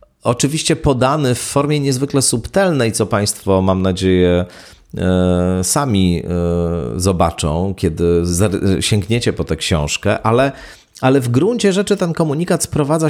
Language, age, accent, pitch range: Polish, 40-59, native, 95-140 Hz